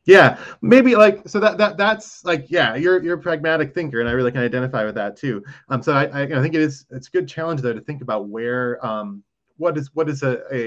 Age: 20-39